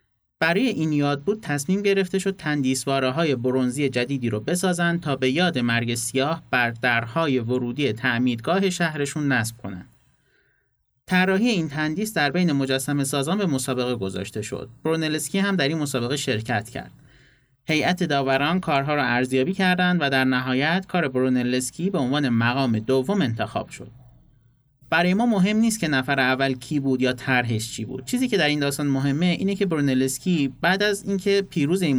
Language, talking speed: Persian, 165 wpm